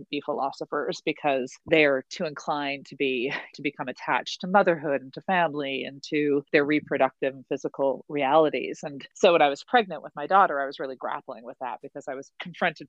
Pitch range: 145-175 Hz